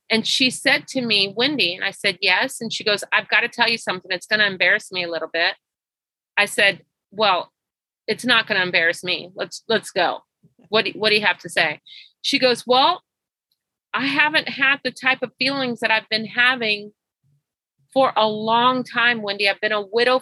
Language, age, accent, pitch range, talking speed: English, 40-59, American, 220-325 Hz, 210 wpm